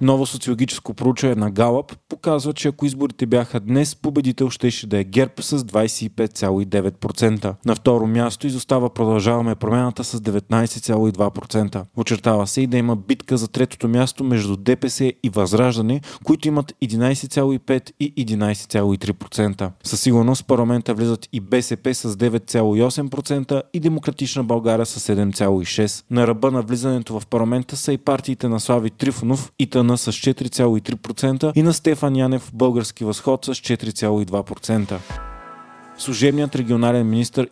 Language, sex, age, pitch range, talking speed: Bulgarian, male, 20-39, 110-135 Hz, 140 wpm